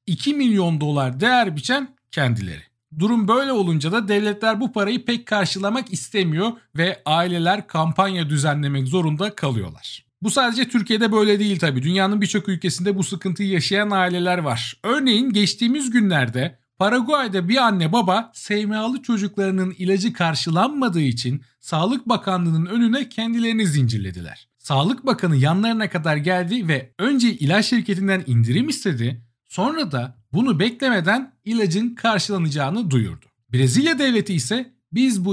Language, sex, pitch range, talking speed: Turkish, male, 150-225 Hz, 130 wpm